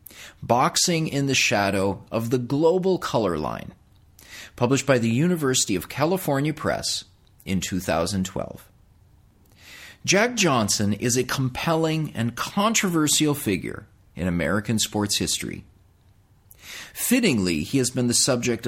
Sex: male